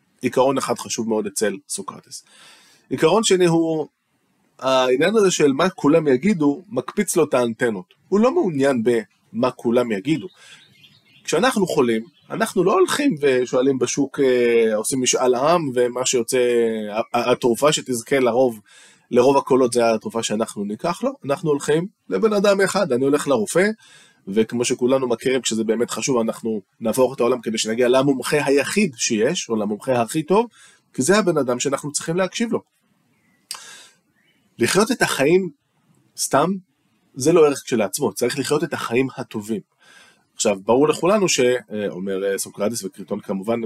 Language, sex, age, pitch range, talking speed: Hebrew, male, 20-39, 120-165 Hz, 140 wpm